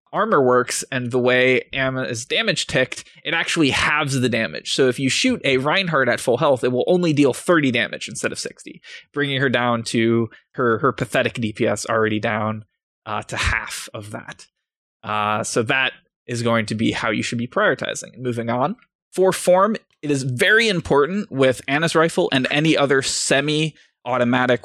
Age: 20-39